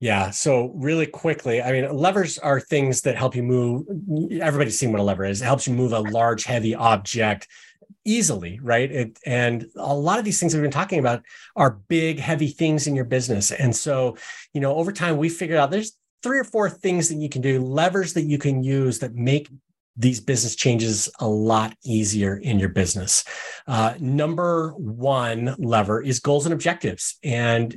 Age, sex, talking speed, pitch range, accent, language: 30-49, male, 190 wpm, 115-150 Hz, American, English